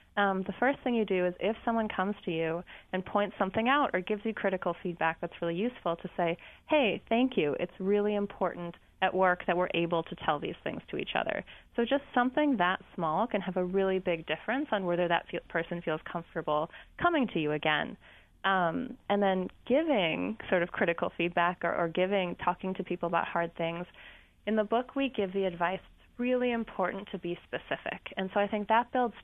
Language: English